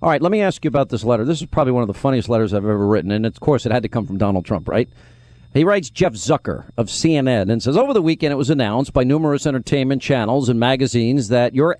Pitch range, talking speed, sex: 120-160 Hz, 270 wpm, male